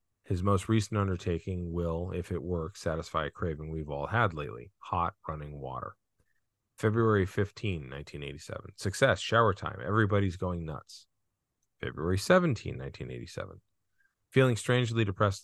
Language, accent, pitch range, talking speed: English, American, 85-105 Hz, 130 wpm